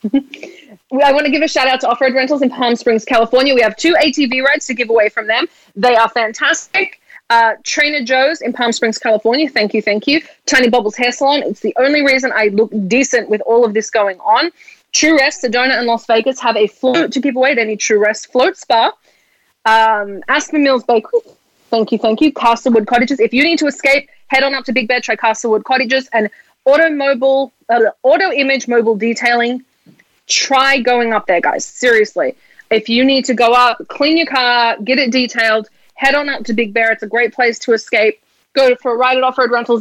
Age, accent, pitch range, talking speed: 20-39, Australian, 225-275 Hz, 215 wpm